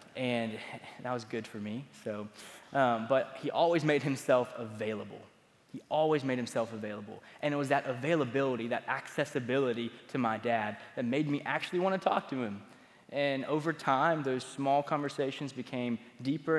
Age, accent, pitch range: 10-29, American, 120-150 Hz